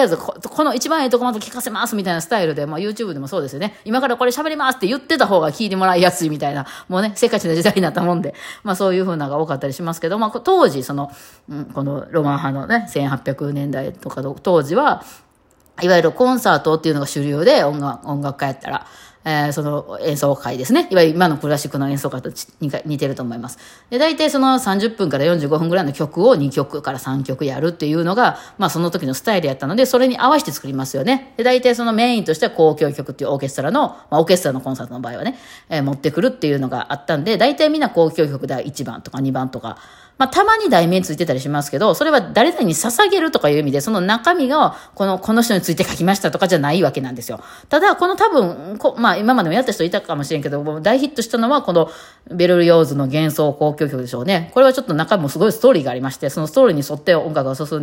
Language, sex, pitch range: Japanese, female, 145-225 Hz